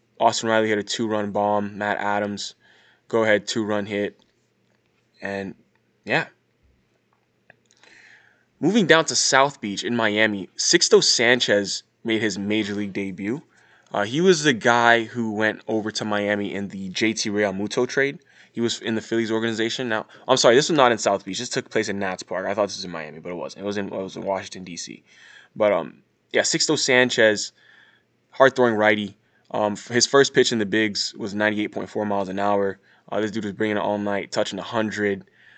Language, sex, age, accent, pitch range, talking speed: English, male, 20-39, American, 100-115 Hz, 185 wpm